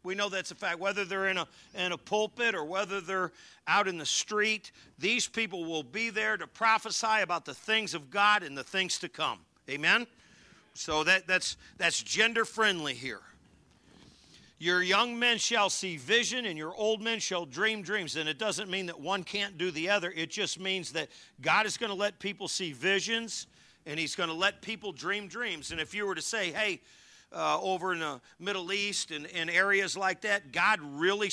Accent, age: American, 50-69